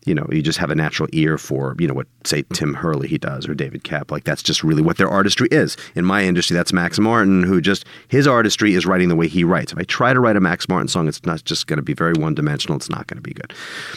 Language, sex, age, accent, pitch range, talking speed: English, male, 40-59, American, 85-120 Hz, 290 wpm